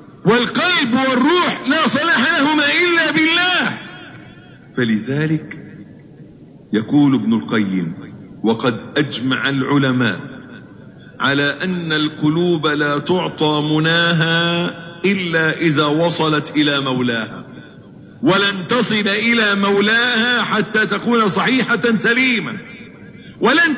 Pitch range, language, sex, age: 150-220 Hz, Arabic, male, 50-69